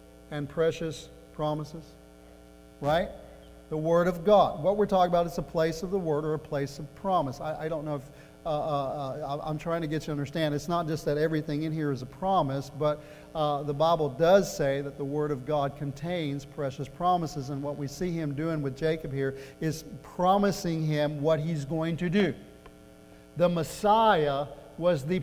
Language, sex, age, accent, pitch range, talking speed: English, male, 50-69, American, 145-180 Hz, 195 wpm